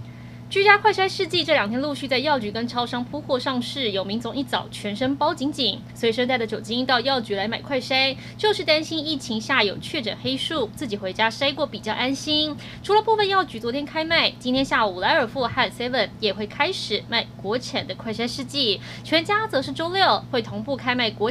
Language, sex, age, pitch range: Chinese, female, 20-39, 225-300 Hz